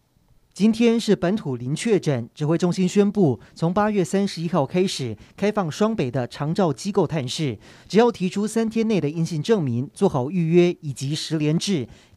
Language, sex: Chinese, male